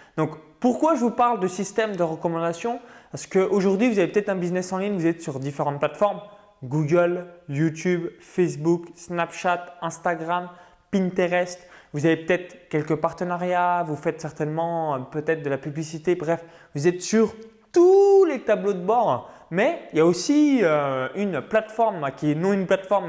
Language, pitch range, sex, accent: French, 160-205 Hz, male, French